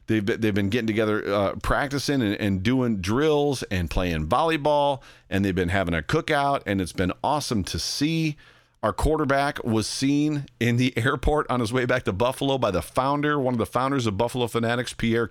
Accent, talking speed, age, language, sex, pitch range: American, 195 wpm, 40-59, English, male, 105-135 Hz